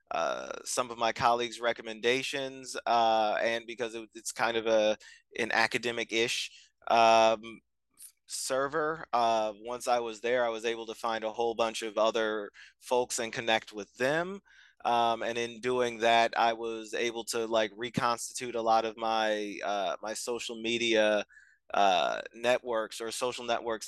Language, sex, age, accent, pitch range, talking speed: English, male, 20-39, American, 115-130 Hz, 155 wpm